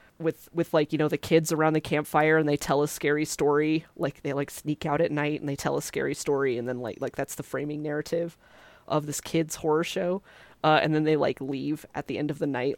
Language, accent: English, American